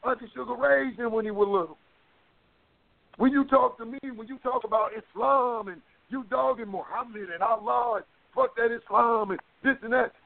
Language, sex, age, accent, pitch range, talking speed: English, male, 50-69, American, 195-255 Hz, 185 wpm